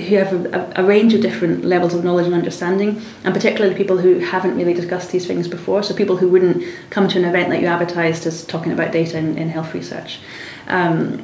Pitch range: 175-195 Hz